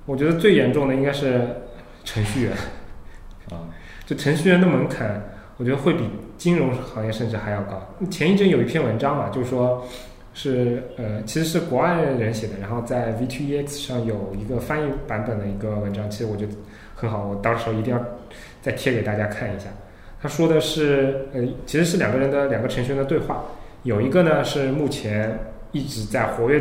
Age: 20-39